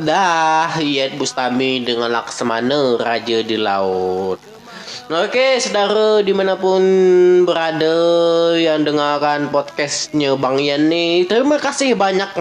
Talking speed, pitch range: 100 wpm, 160-230 Hz